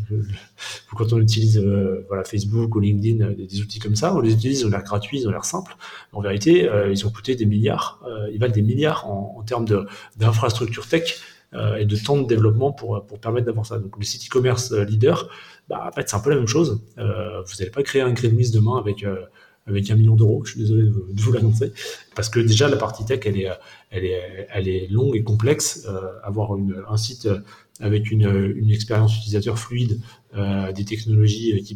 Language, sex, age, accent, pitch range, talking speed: French, male, 30-49, French, 100-115 Hz, 220 wpm